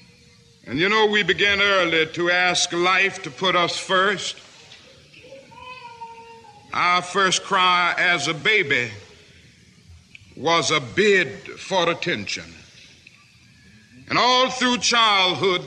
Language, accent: English, American